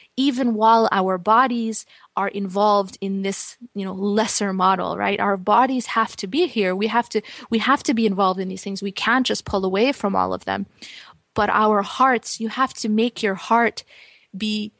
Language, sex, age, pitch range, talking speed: English, female, 20-39, 200-245 Hz, 200 wpm